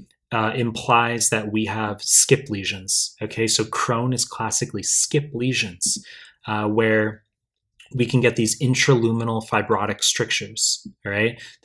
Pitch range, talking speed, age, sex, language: 105-120 Hz, 125 wpm, 20-39, male, English